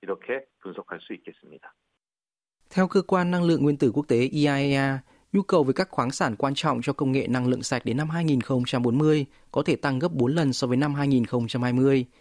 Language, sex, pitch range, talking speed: Vietnamese, male, 125-155 Hz, 180 wpm